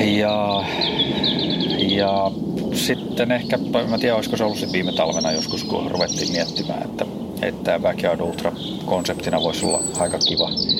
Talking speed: 135 wpm